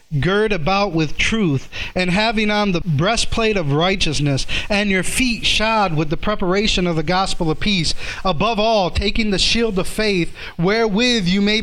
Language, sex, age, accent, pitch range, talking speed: English, male, 40-59, American, 175-230 Hz, 170 wpm